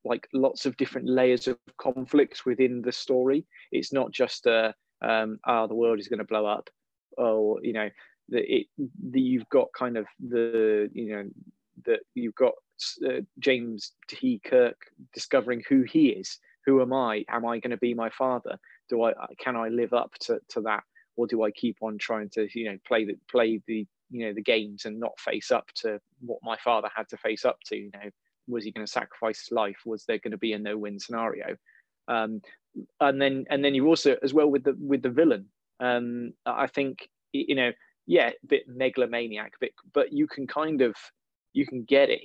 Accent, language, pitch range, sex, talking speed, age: British, English, 110-140 Hz, male, 210 wpm, 20-39